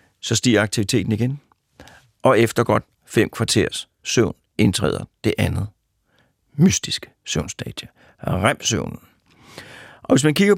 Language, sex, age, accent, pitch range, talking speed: Danish, male, 60-79, native, 105-140 Hz, 115 wpm